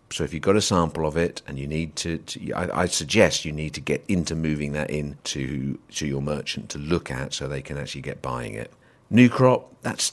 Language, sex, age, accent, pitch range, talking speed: English, male, 50-69, British, 75-100 Hz, 245 wpm